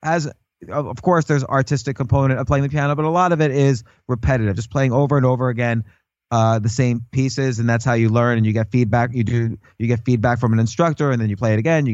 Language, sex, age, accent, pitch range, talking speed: English, male, 30-49, American, 125-155 Hz, 255 wpm